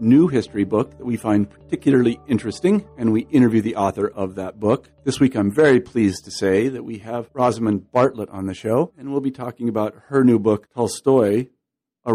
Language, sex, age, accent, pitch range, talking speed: English, male, 50-69, American, 105-135 Hz, 205 wpm